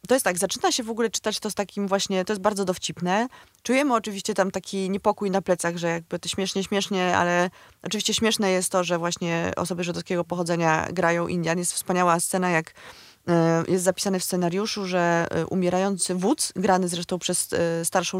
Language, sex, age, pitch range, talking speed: Polish, female, 20-39, 170-210 Hz, 180 wpm